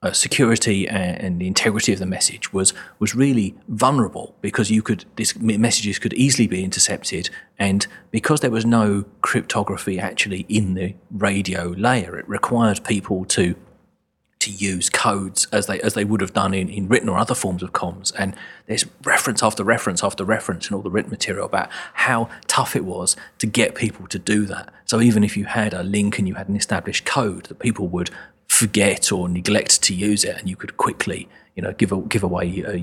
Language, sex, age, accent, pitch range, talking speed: English, male, 30-49, British, 95-110 Hz, 205 wpm